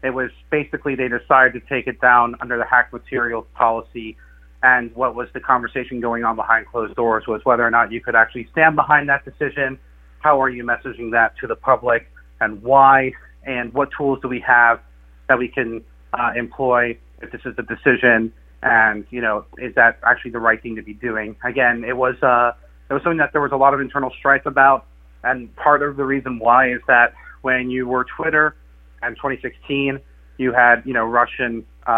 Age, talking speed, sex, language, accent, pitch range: 30-49, 205 wpm, male, English, American, 115-135 Hz